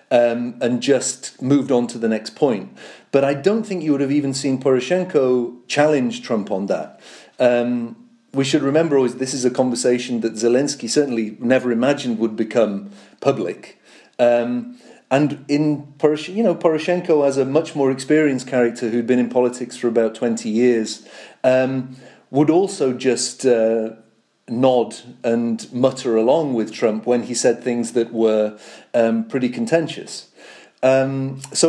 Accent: British